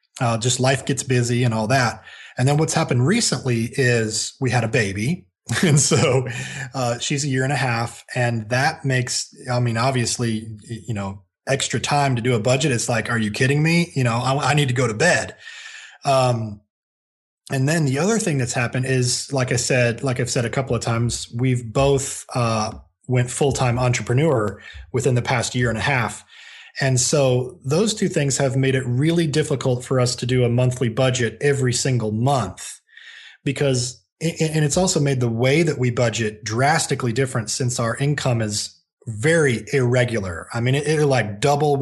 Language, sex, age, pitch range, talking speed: English, male, 20-39, 115-140 Hz, 190 wpm